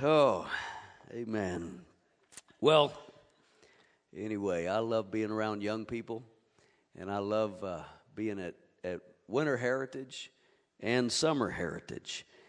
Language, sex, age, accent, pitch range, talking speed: English, male, 50-69, American, 90-110 Hz, 105 wpm